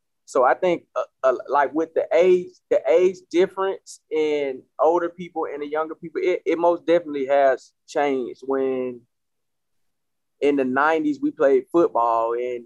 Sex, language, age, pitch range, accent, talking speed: male, English, 20-39, 140-215 Hz, American, 155 wpm